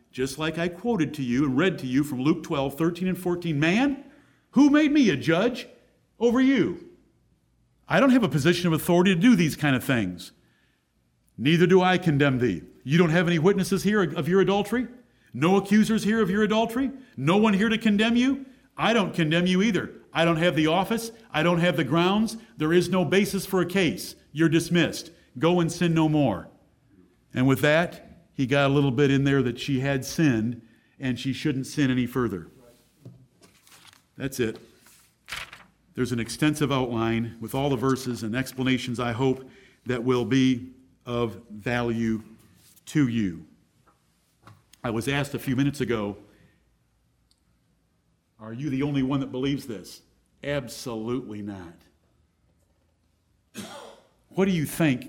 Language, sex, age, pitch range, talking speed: English, male, 50-69, 125-180 Hz, 170 wpm